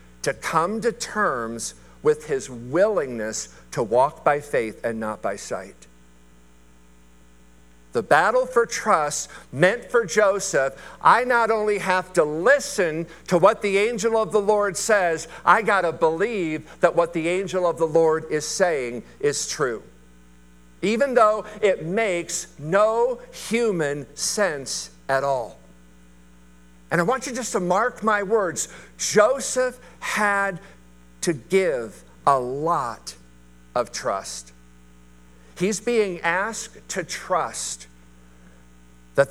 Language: English